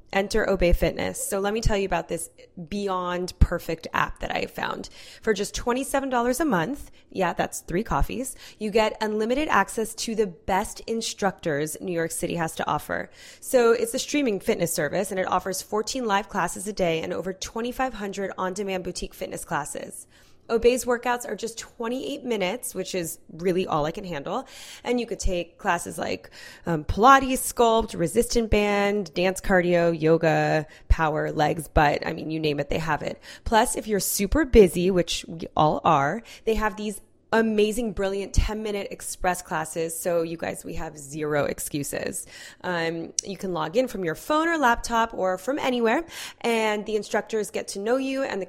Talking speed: 180 wpm